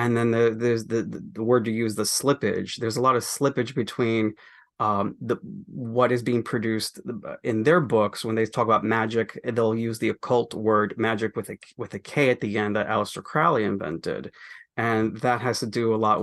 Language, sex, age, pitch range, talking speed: English, male, 30-49, 110-125 Hz, 205 wpm